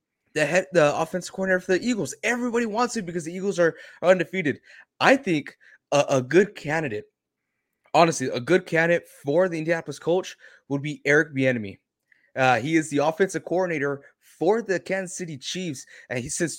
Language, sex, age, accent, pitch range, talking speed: English, male, 20-39, American, 140-185 Hz, 175 wpm